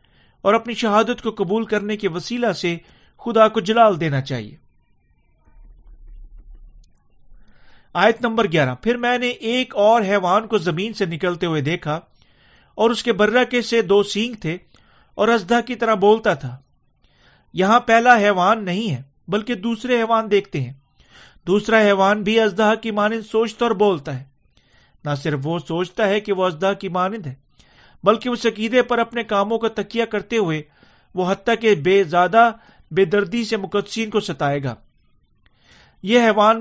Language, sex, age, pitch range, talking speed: Urdu, male, 40-59, 175-225 Hz, 160 wpm